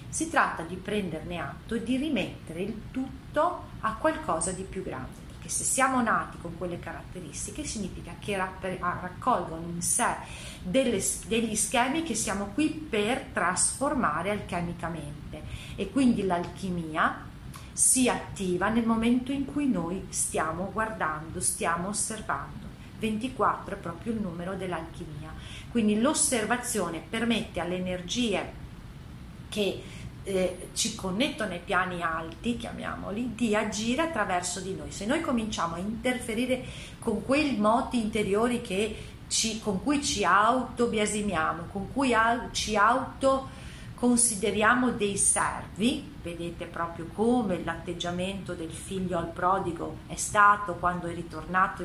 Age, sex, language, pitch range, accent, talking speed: 40-59, female, Italian, 170-235 Hz, native, 125 wpm